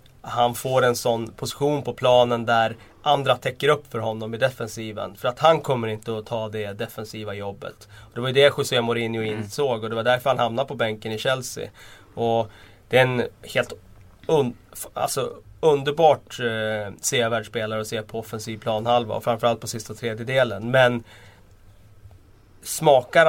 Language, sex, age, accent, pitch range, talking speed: Swedish, male, 30-49, native, 110-125 Hz, 175 wpm